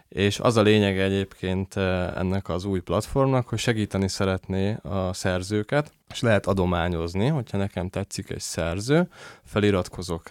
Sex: male